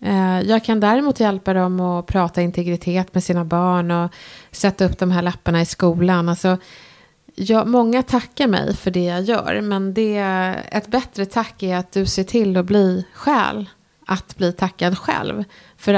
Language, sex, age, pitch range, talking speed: Swedish, female, 30-49, 175-205 Hz, 175 wpm